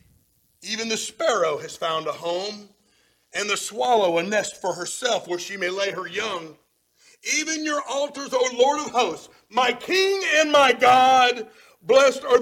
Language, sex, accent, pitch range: English, male, American, 200-290 Hz